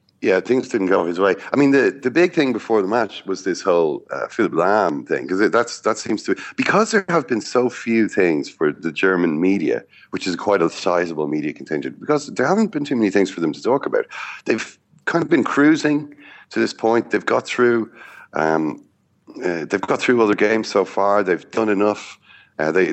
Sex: male